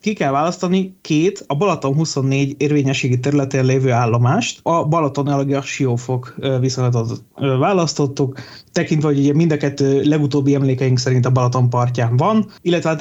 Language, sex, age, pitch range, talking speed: Hungarian, male, 30-49, 135-165 Hz, 145 wpm